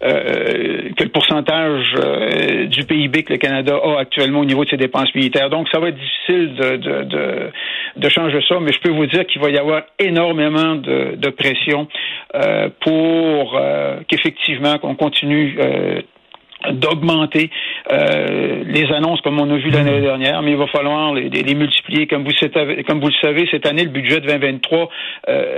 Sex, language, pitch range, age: male, French, 145-165 Hz, 60-79